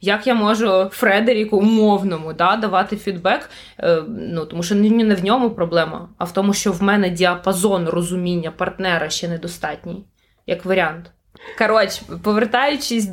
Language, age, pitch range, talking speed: Ukrainian, 20-39, 180-220 Hz, 135 wpm